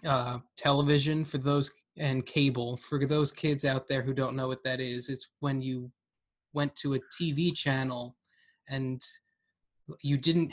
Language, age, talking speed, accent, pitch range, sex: English, 20-39, 160 wpm, American, 130-155 Hz, male